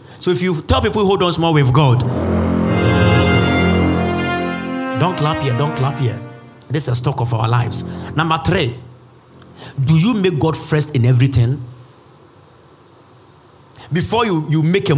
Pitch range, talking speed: 125-155 Hz, 150 wpm